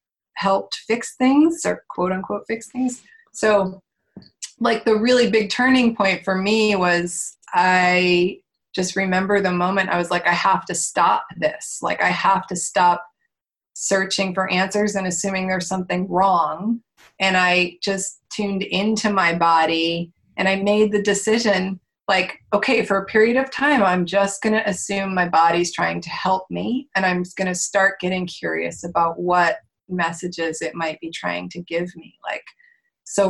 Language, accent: English, American